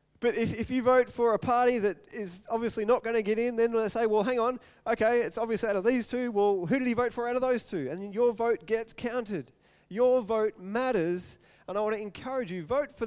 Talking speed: 255 wpm